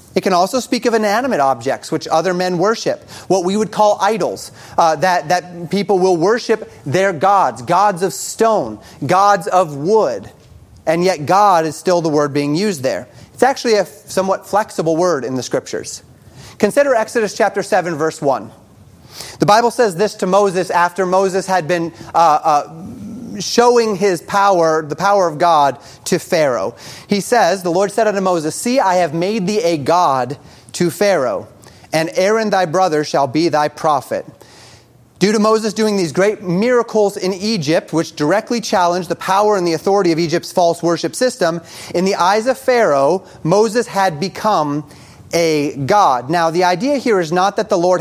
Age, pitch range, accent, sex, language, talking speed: 30-49, 160-205 Hz, American, male, English, 175 wpm